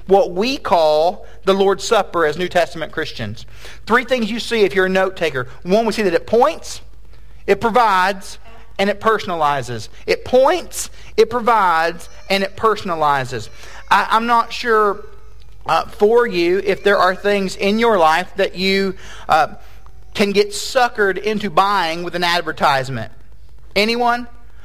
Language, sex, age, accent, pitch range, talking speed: English, male, 40-59, American, 175-210 Hz, 155 wpm